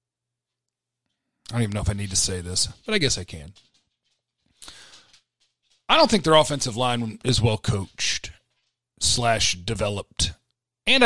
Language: English